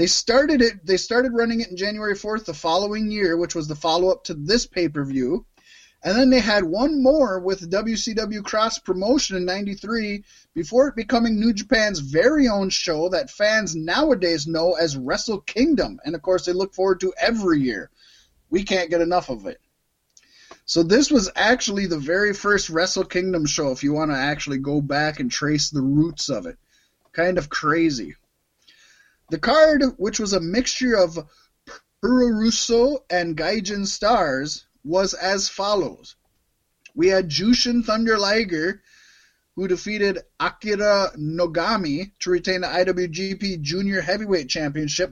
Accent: American